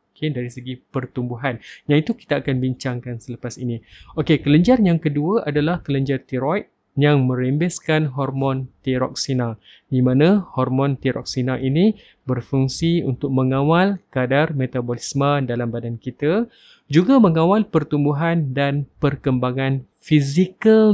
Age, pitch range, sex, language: 20-39, 130-155 Hz, male, Malay